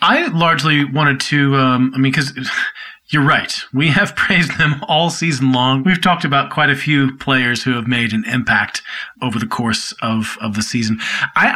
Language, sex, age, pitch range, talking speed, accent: English, male, 40-59, 120-150 Hz, 195 wpm, American